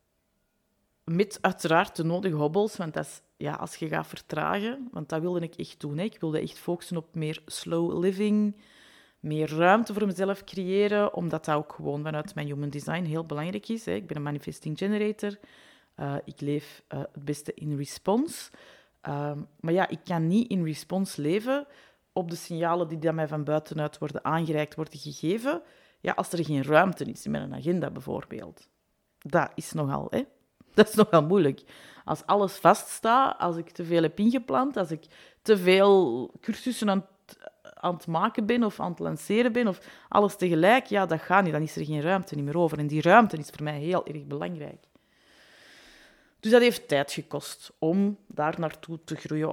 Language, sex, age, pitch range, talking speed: Dutch, female, 30-49, 155-205 Hz, 190 wpm